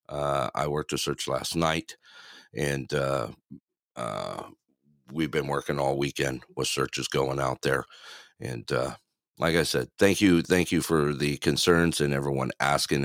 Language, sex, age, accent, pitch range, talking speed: English, male, 50-69, American, 70-80 Hz, 160 wpm